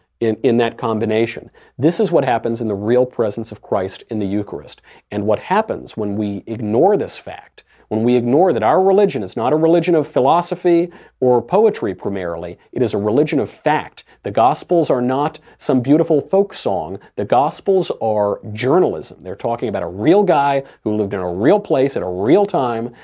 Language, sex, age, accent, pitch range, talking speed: English, male, 40-59, American, 105-155 Hz, 195 wpm